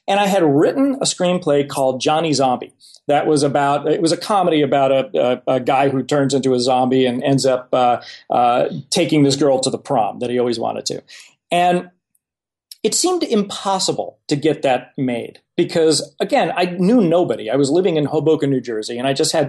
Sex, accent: male, American